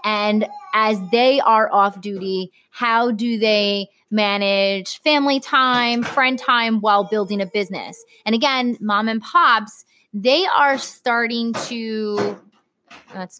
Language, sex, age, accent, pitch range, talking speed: English, female, 20-39, American, 200-280 Hz, 125 wpm